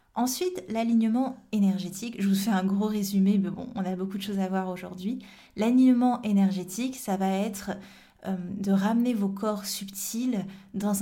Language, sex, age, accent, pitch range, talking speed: French, female, 20-39, French, 190-215 Hz, 170 wpm